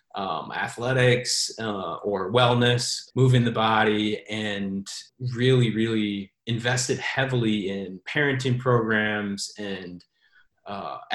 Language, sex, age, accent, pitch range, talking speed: English, male, 30-49, American, 105-125 Hz, 95 wpm